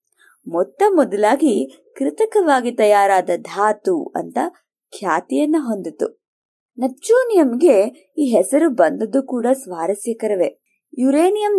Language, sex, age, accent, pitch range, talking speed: Kannada, female, 20-39, native, 215-315 Hz, 80 wpm